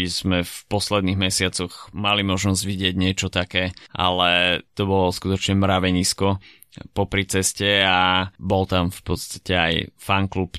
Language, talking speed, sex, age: Slovak, 130 wpm, male, 20-39